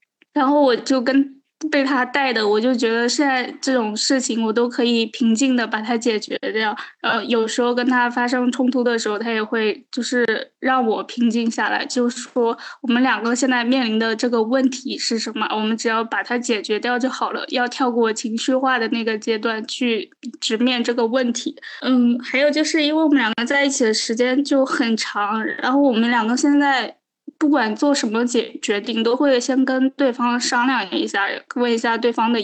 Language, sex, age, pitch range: Chinese, female, 10-29, 230-265 Hz